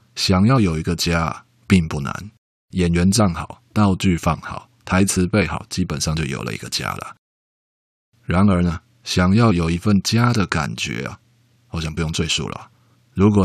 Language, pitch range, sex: Chinese, 80-105 Hz, male